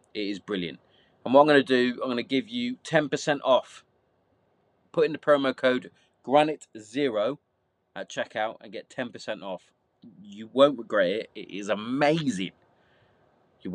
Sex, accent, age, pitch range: male, British, 30-49, 105-145 Hz